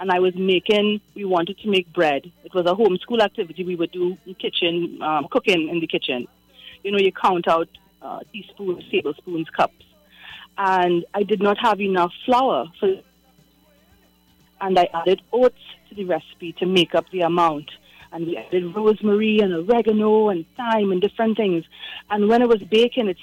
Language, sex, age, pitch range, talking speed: English, female, 30-49, 180-220 Hz, 180 wpm